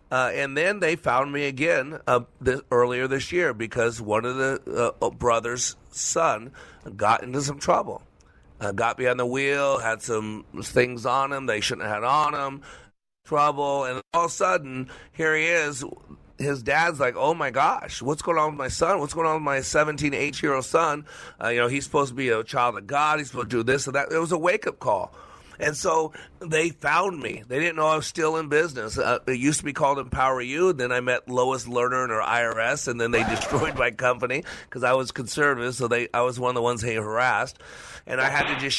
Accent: American